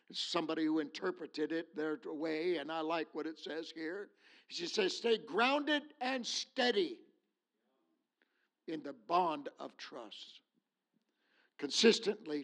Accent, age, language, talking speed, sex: American, 60-79, English, 120 wpm, male